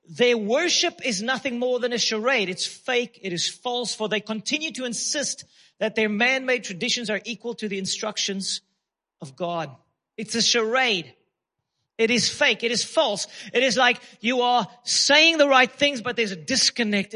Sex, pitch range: male, 195-255 Hz